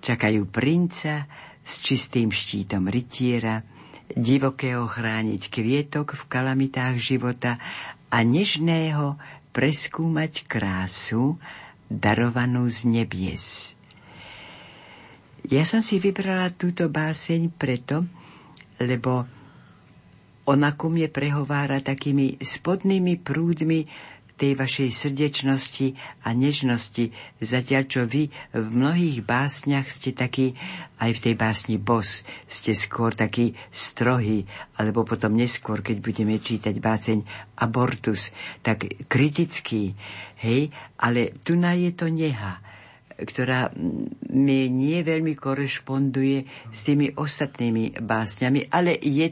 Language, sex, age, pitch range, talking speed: Slovak, female, 60-79, 115-145 Hz, 100 wpm